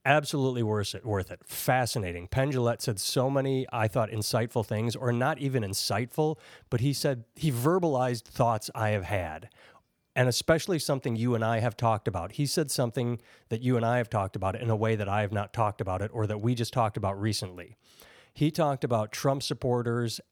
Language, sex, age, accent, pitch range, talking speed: English, male, 30-49, American, 105-130 Hz, 205 wpm